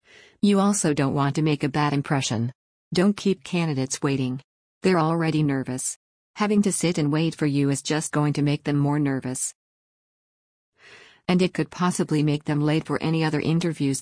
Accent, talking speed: American, 180 wpm